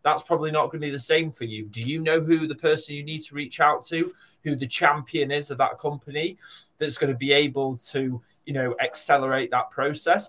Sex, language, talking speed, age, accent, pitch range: male, English, 235 wpm, 20-39, British, 125-160 Hz